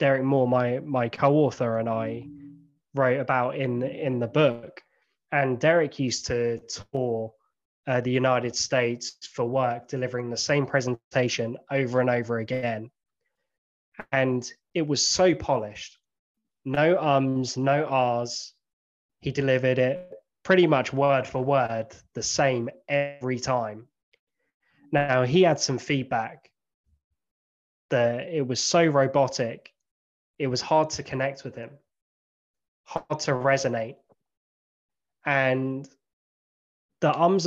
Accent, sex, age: British, male, 20-39